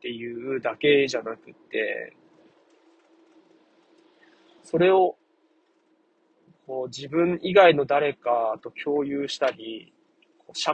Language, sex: Japanese, male